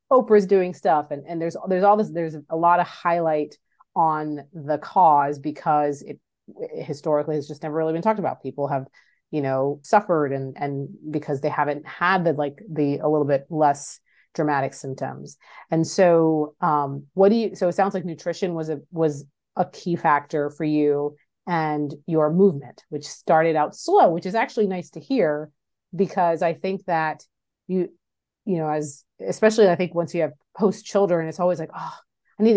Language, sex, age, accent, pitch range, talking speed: English, female, 30-49, American, 145-190 Hz, 190 wpm